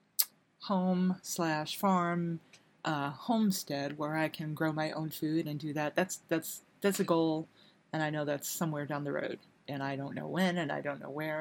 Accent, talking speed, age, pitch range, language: American, 195 wpm, 30-49, 150-185 Hz, English